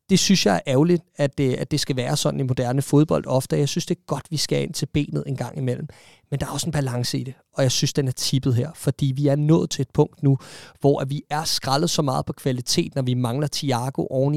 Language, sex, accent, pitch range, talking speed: Danish, male, native, 130-160 Hz, 265 wpm